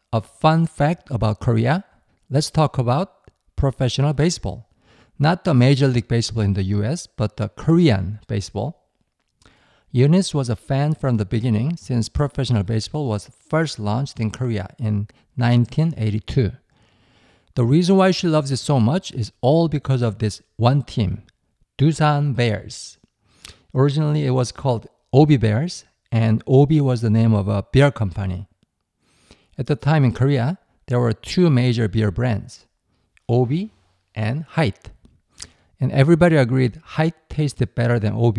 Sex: male